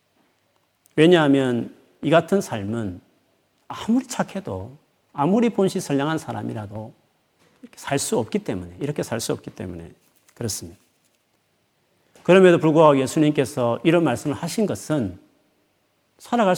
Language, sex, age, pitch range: Korean, male, 40-59, 115-170 Hz